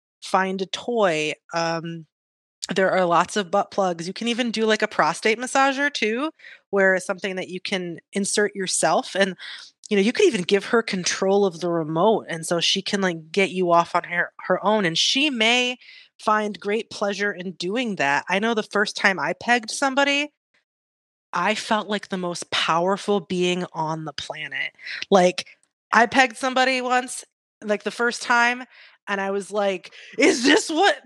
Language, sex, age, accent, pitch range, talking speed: English, female, 30-49, American, 175-225 Hz, 180 wpm